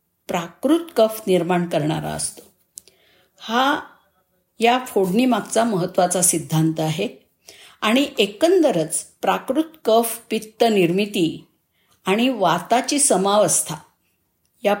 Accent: native